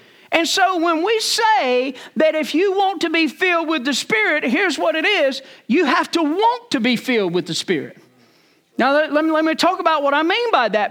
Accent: American